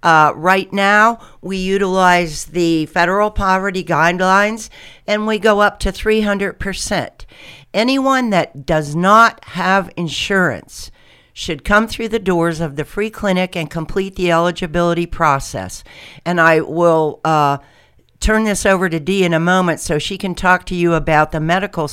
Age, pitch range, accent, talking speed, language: 60-79, 165-200 Hz, American, 155 wpm, English